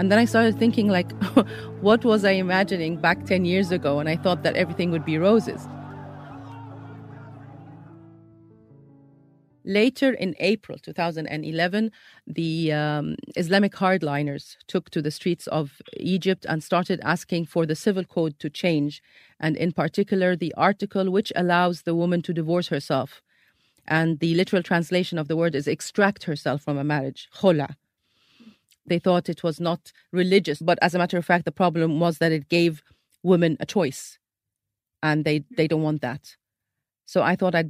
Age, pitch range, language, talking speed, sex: 40-59, 150-185 Hz, Arabic, 160 wpm, female